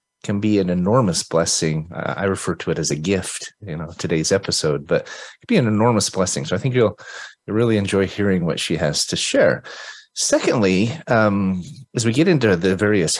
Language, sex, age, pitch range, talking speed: English, male, 30-49, 90-125 Hz, 200 wpm